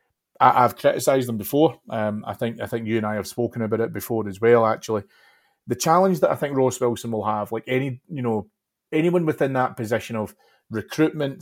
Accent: British